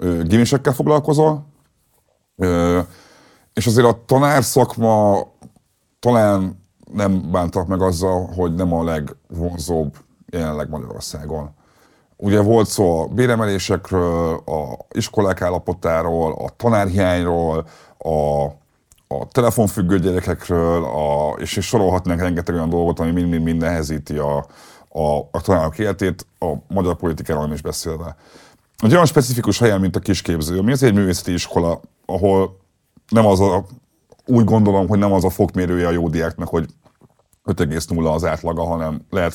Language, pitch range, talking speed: Hungarian, 80-100 Hz, 125 wpm